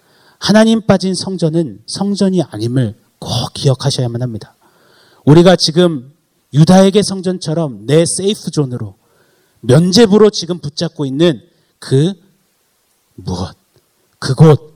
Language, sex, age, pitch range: Korean, male, 30-49, 115-170 Hz